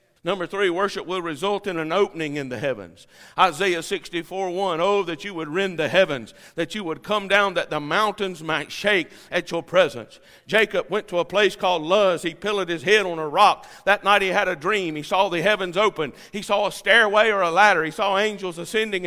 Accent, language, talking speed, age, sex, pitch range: American, English, 220 wpm, 50-69, male, 160-210 Hz